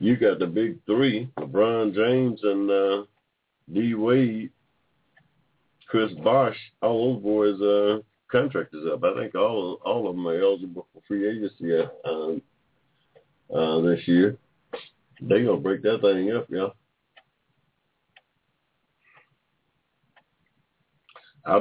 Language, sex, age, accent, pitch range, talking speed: English, male, 50-69, American, 105-125 Hz, 120 wpm